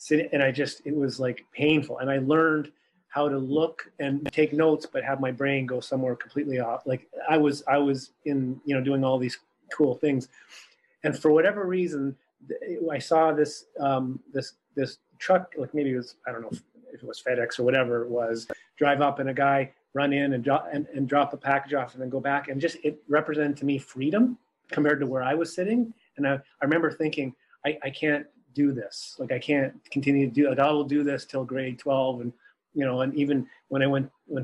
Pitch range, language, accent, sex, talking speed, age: 130-150 Hz, English, American, male, 225 wpm, 30-49